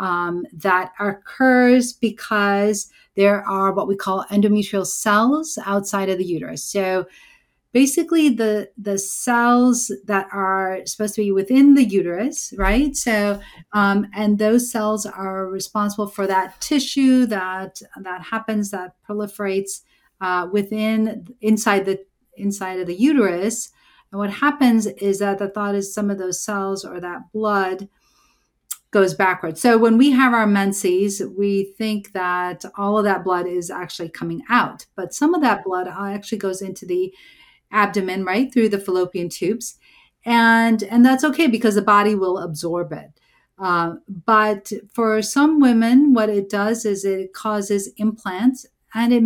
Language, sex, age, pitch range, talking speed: English, female, 40-59, 190-230 Hz, 150 wpm